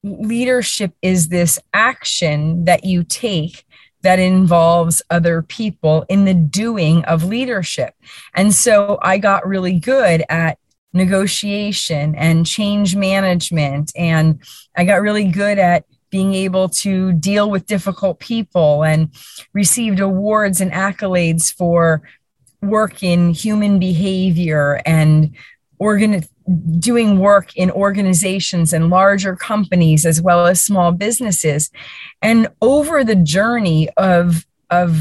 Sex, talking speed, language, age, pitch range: female, 120 wpm, English, 30-49, 165-200 Hz